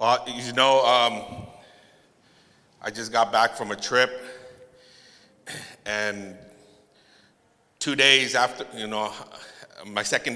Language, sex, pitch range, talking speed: English, male, 110-135 Hz, 110 wpm